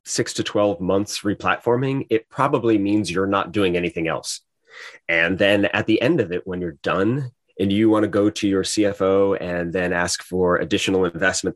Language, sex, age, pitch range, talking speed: English, male, 30-49, 90-110 Hz, 190 wpm